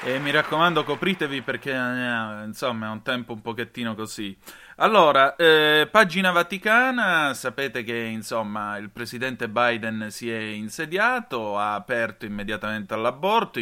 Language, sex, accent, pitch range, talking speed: Italian, male, native, 115-145 Hz, 130 wpm